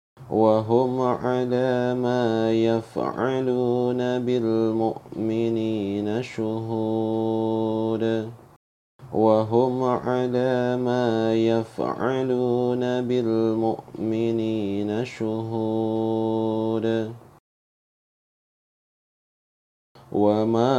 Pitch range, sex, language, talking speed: 110-125 Hz, male, Indonesian, 40 wpm